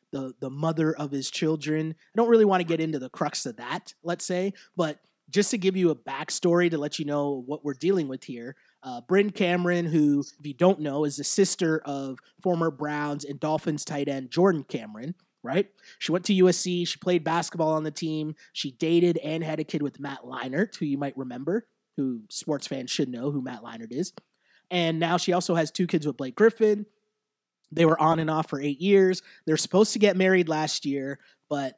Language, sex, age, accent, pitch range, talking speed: English, male, 30-49, American, 145-185 Hz, 215 wpm